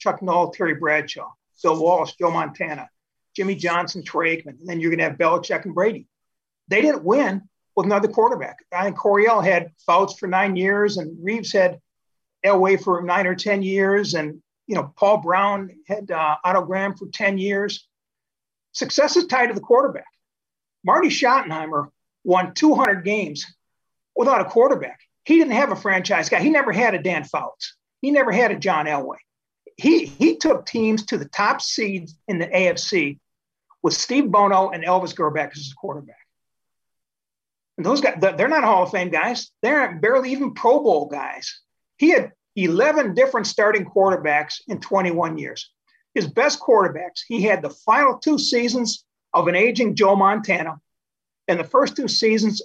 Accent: American